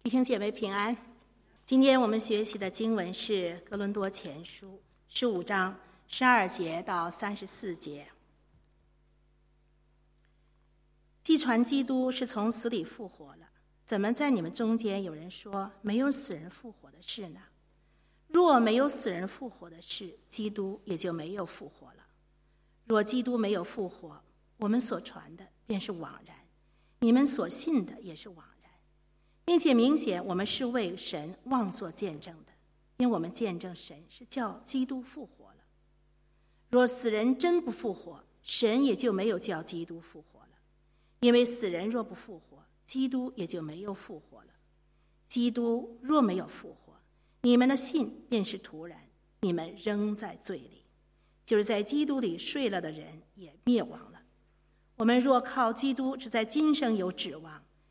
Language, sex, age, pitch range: English, female, 50-69, 185-250 Hz